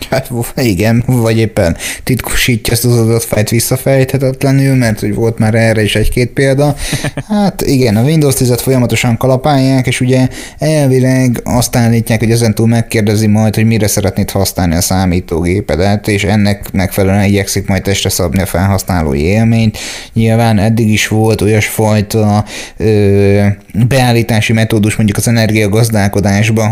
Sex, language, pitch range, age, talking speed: male, Hungarian, 105-120 Hz, 20-39, 130 wpm